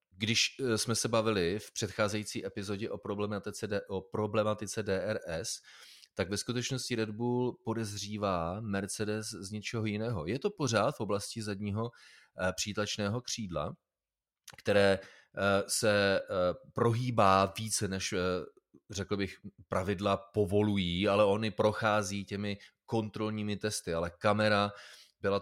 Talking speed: 110 wpm